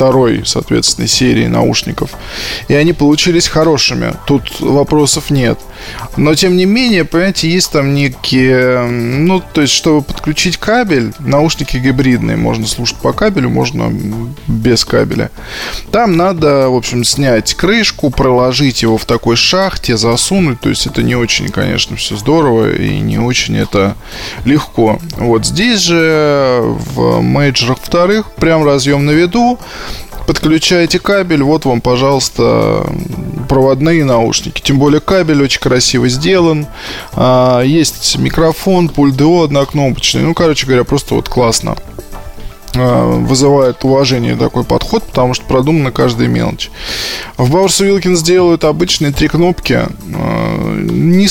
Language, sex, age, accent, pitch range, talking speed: Russian, male, 20-39, native, 125-160 Hz, 125 wpm